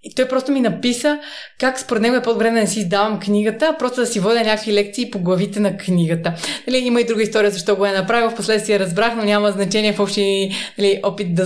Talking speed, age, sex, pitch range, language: 235 wpm, 20-39, female, 185-220 Hz, Bulgarian